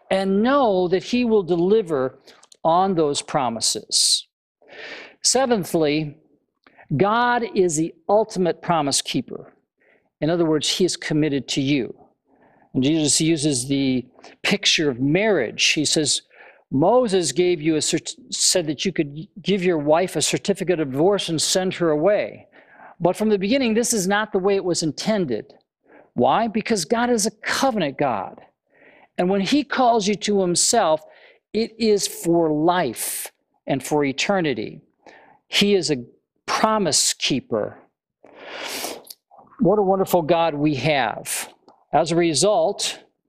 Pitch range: 150-200 Hz